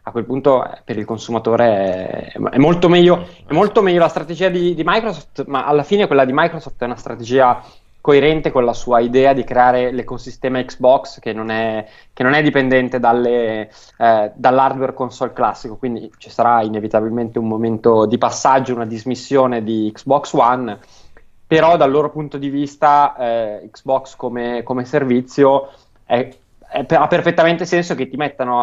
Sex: male